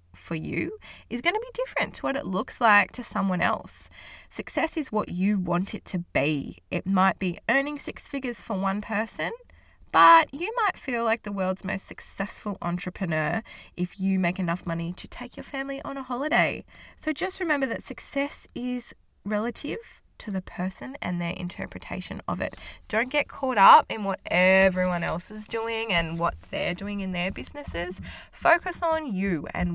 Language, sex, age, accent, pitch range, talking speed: English, female, 20-39, Australian, 175-245 Hz, 180 wpm